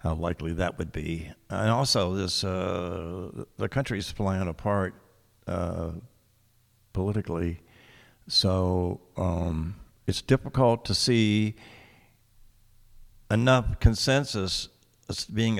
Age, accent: 60-79, American